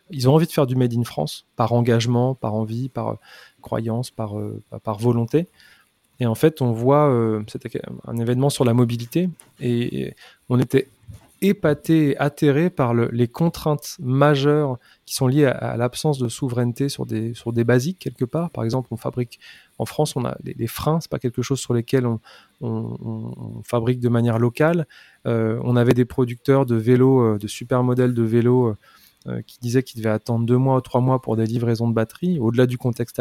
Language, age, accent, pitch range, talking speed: French, 20-39, French, 120-150 Hz, 205 wpm